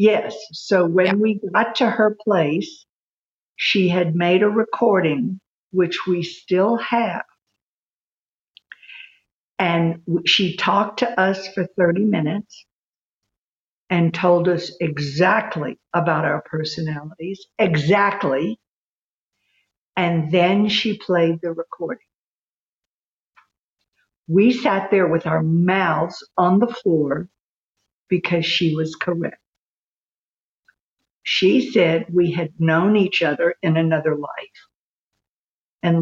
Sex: female